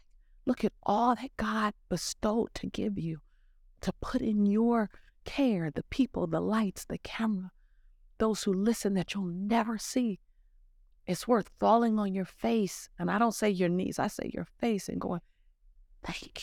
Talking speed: 170 wpm